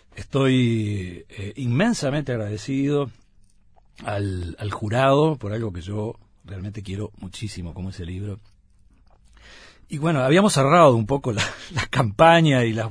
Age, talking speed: 50-69, 125 wpm